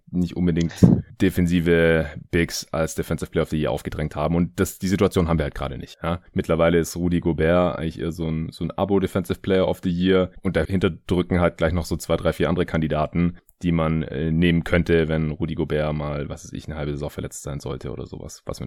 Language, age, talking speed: German, 30-49, 215 wpm